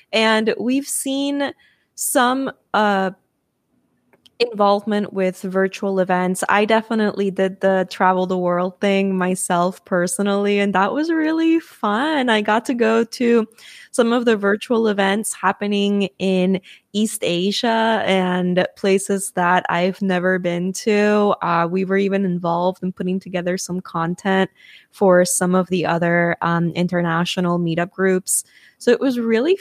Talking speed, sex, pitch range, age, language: 140 wpm, female, 175-205 Hz, 20-39, English